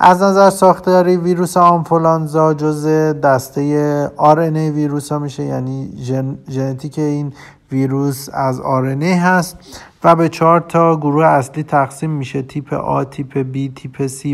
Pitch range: 140-165 Hz